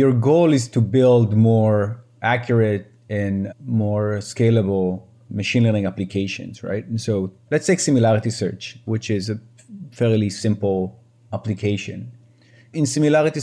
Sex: male